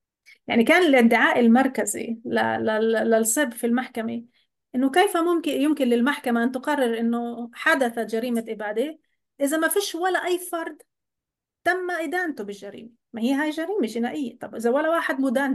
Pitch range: 235-300 Hz